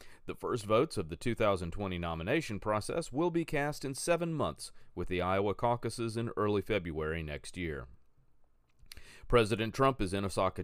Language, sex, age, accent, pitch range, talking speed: English, male, 40-59, American, 85-125 Hz, 160 wpm